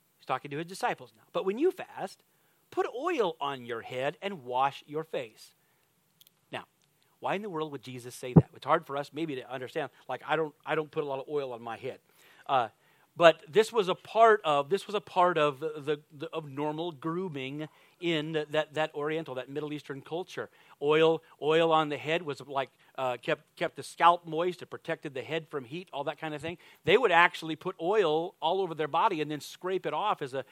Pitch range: 145-180 Hz